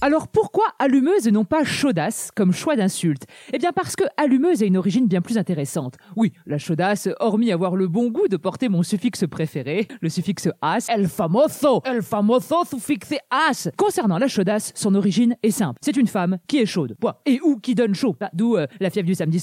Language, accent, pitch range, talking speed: French, French, 185-250 Hz, 245 wpm